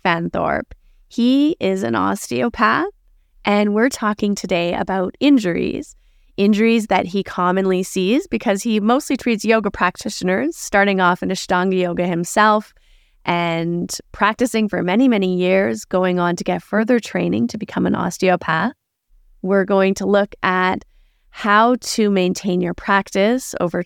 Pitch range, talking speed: 185-225 Hz, 140 wpm